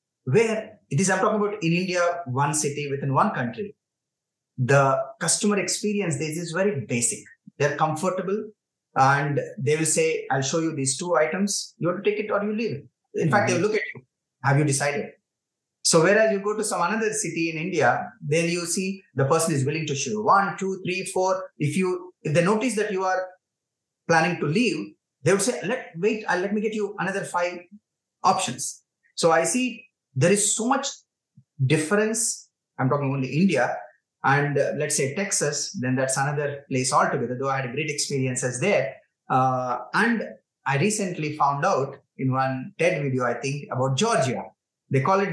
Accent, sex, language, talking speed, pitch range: Indian, male, English, 190 wpm, 140-195 Hz